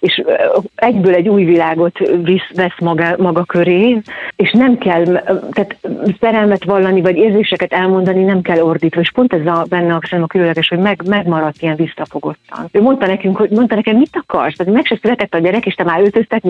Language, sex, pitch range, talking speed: Hungarian, female, 165-195 Hz, 185 wpm